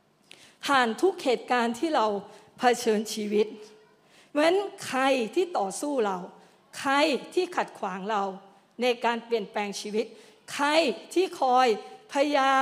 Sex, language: female, Thai